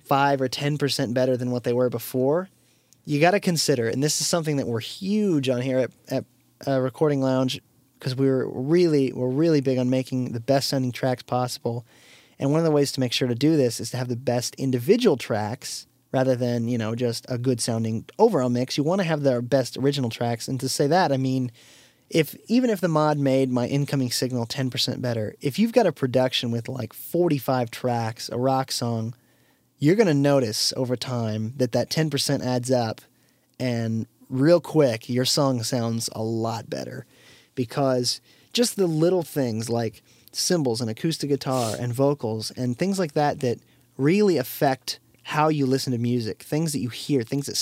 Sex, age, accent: male, 30-49, American